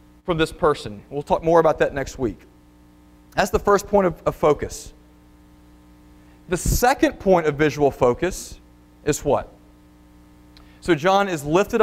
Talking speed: 145 wpm